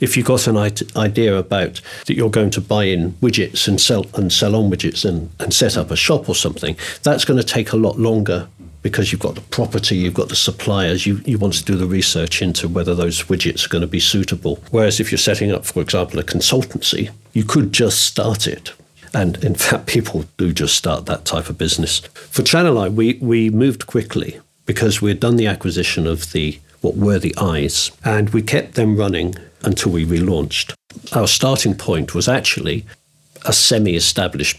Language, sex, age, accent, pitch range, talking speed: English, male, 50-69, British, 85-115 Hz, 205 wpm